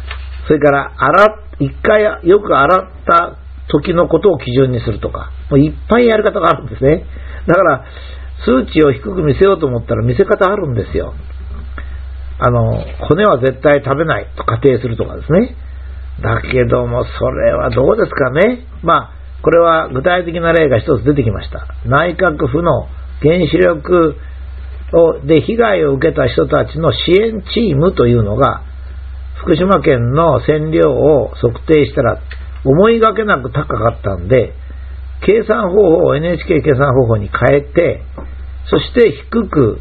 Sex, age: male, 50-69